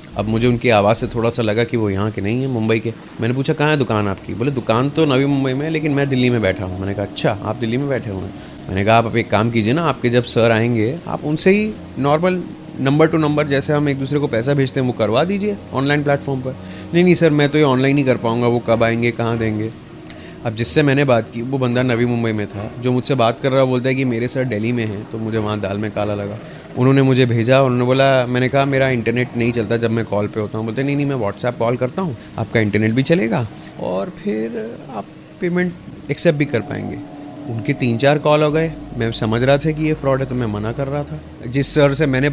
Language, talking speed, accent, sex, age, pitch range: Hindi, 260 wpm, native, male, 30-49, 115-140 Hz